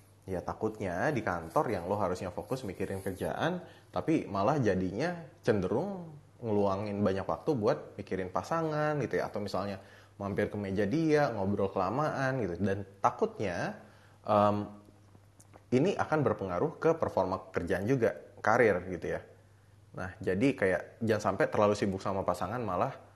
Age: 20-39